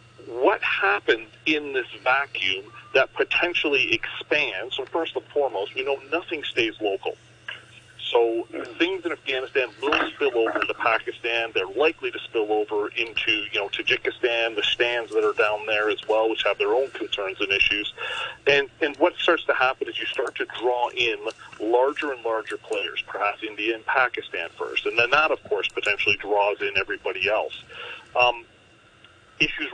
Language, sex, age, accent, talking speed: English, male, 40-59, American, 170 wpm